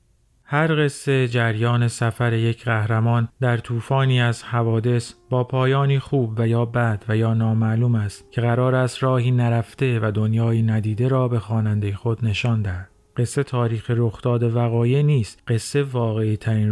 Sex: male